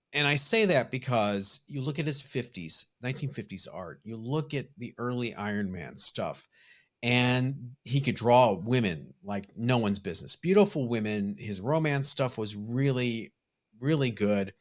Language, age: English, 40-59